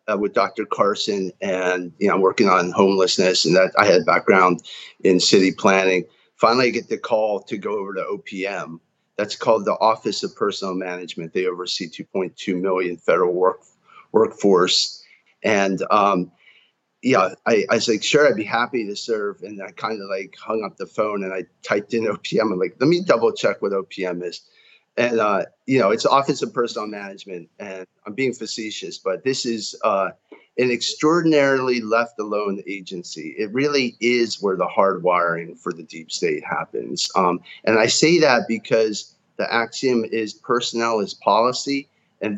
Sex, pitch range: male, 95-120 Hz